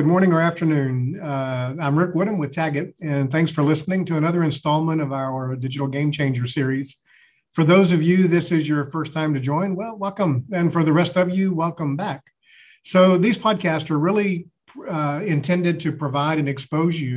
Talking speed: 195 wpm